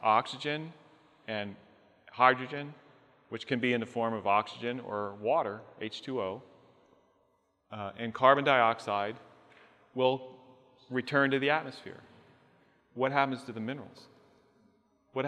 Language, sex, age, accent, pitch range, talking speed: English, male, 40-59, American, 115-150 Hz, 115 wpm